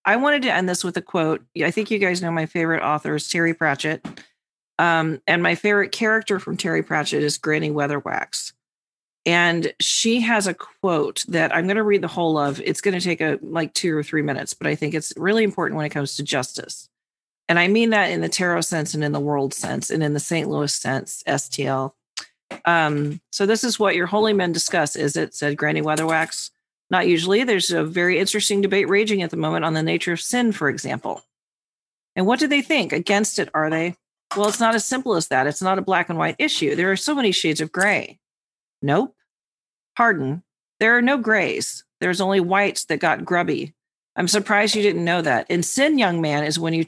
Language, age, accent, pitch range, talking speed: English, 40-59, American, 155-205 Hz, 220 wpm